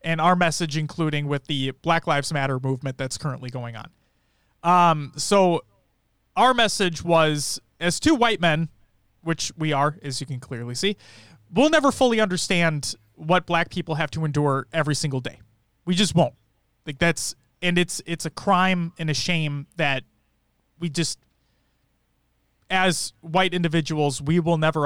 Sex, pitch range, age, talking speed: male, 135-175 Hz, 30-49, 160 wpm